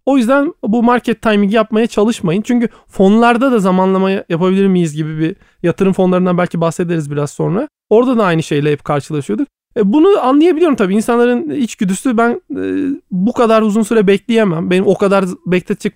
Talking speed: 160 wpm